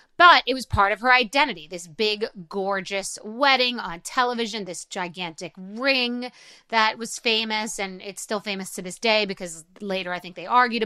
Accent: American